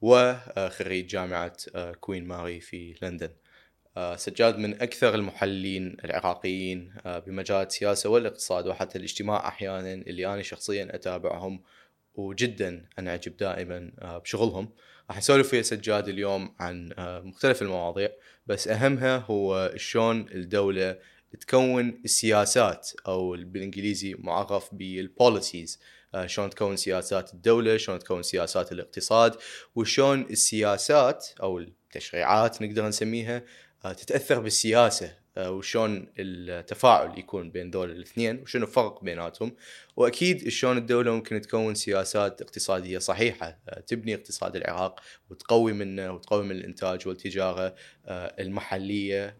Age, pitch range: 20-39, 95-115 Hz